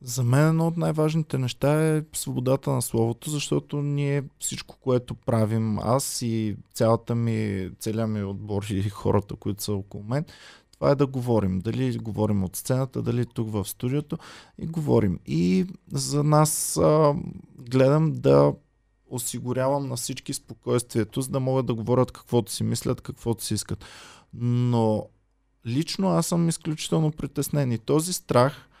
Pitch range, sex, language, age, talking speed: 115-150 Hz, male, Bulgarian, 20-39, 150 wpm